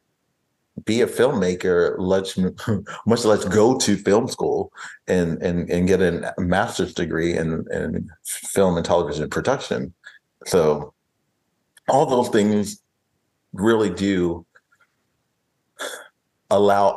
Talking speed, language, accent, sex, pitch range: 105 wpm, English, American, male, 90-115 Hz